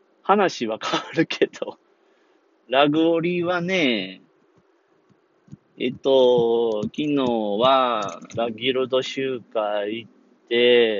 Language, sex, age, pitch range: Japanese, male, 30-49, 115-190 Hz